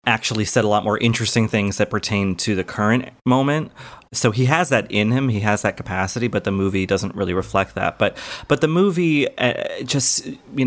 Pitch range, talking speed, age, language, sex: 105-130 Hz, 210 wpm, 30-49, English, male